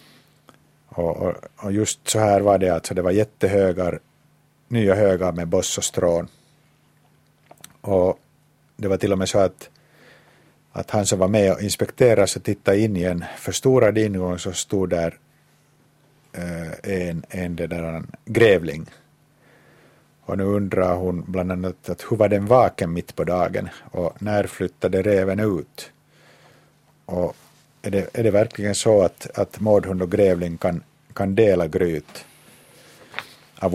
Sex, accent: male, Finnish